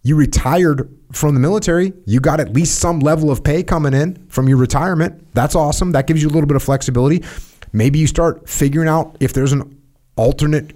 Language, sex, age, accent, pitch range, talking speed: English, male, 30-49, American, 115-155 Hz, 205 wpm